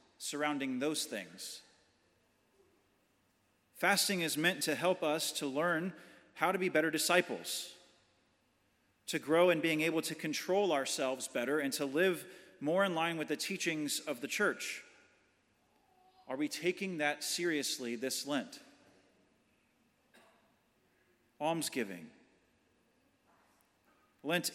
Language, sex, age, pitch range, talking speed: English, male, 40-59, 150-185 Hz, 110 wpm